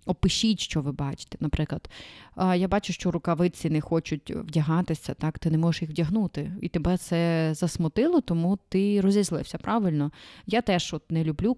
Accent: native